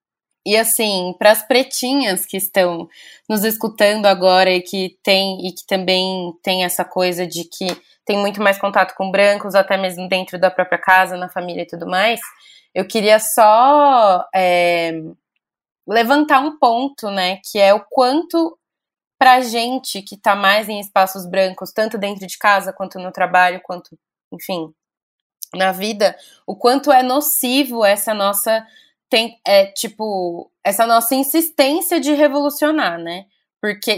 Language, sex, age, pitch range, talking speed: Portuguese, female, 20-39, 185-250 Hz, 150 wpm